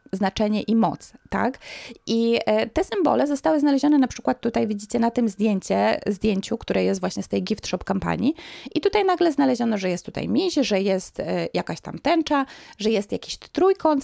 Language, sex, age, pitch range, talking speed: Polish, female, 20-39, 190-285 Hz, 180 wpm